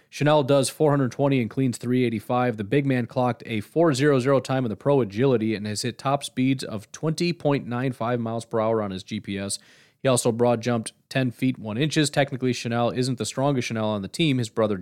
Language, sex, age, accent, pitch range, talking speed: English, male, 30-49, American, 100-130 Hz, 200 wpm